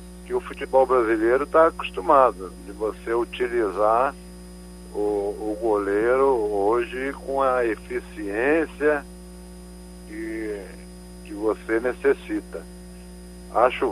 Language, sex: Portuguese, male